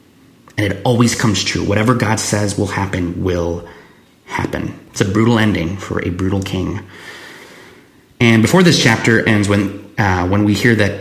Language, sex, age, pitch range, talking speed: English, male, 30-49, 95-120 Hz, 170 wpm